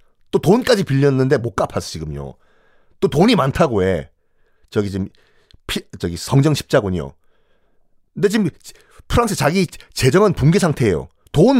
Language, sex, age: Korean, male, 40-59